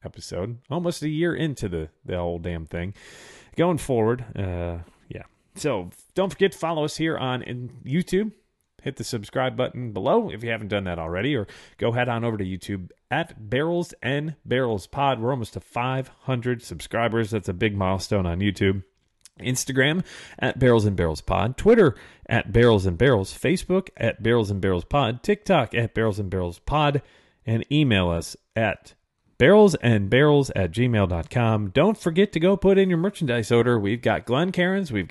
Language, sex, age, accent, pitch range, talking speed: English, male, 30-49, American, 100-140 Hz, 175 wpm